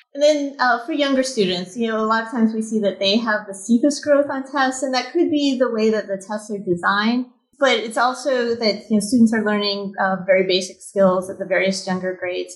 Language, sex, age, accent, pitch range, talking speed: English, female, 30-49, American, 190-235 Hz, 245 wpm